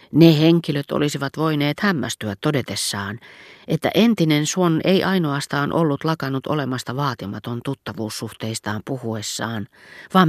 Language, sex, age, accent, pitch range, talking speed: Finnish, female, 40-59, native, 115-155 Hz, 105 wpm